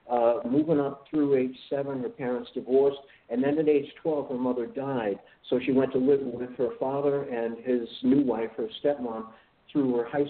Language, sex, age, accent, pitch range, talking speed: English, male, 50-69, American, 125-150 Hz, 200 wpm